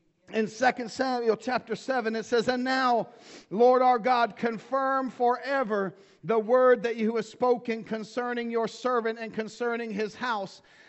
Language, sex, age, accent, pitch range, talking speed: English, male, 40-59, American, 195-230 Hz, 150 wpm